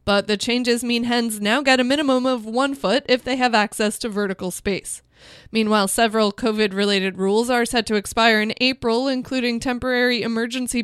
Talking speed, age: 175 wpm, 20-39